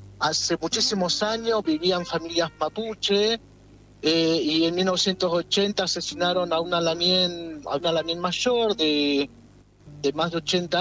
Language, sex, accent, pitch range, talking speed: Spanish, male, Argentinian, 155-200 Hz, 115 wpm